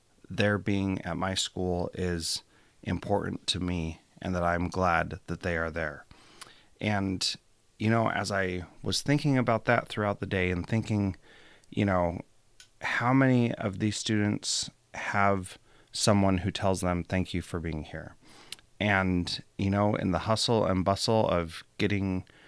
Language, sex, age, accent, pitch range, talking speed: English, male, 30-49, American, 90-110 Hz, 155 wpm